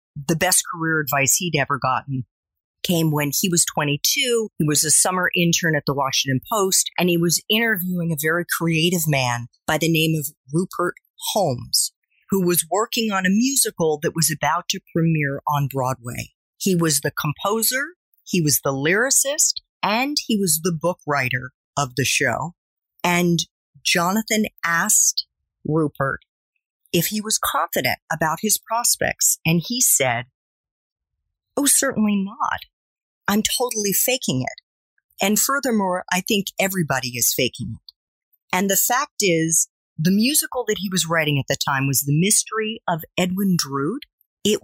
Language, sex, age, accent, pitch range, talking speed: English, female, 40-59, American, 150-210 Hz, 155 wpm